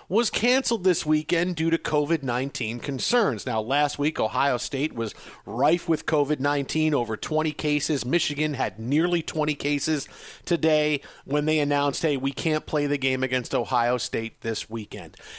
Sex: male